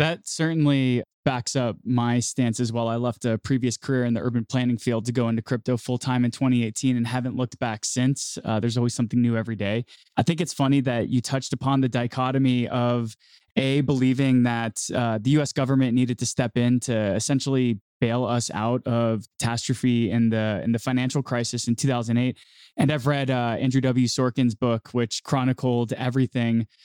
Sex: male